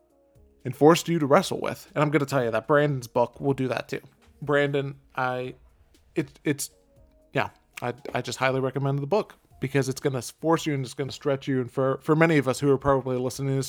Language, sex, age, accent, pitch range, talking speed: English, male, 20-39, American, 130-155 Hz, 235 wpm